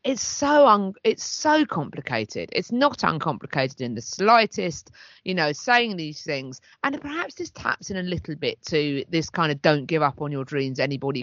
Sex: female